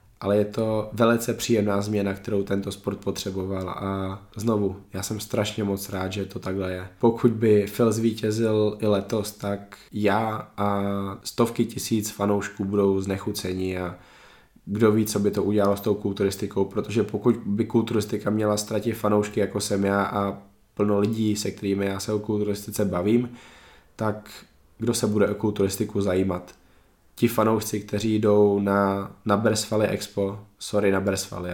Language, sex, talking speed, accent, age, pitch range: Czech, male, 160 wpm, native, 20-39, 100-110 Hz